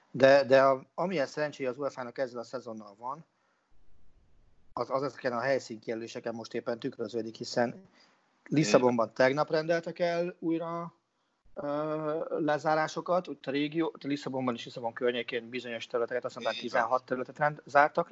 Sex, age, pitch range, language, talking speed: male, 40-59, 120-155 Hz, Hungarian, 140 wpm